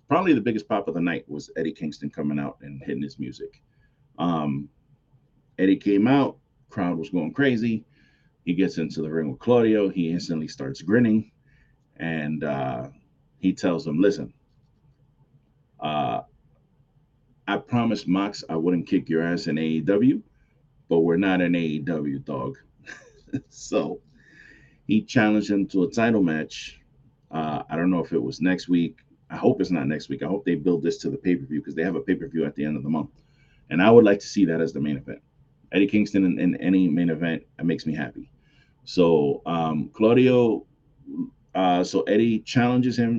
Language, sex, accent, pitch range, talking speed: English, male, American, 80-120 Hz, 180 wpm